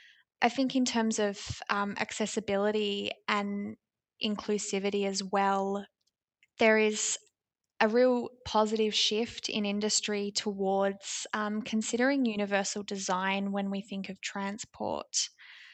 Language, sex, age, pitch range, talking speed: English, female, 10-29, 205-230 Hz, 110 wpm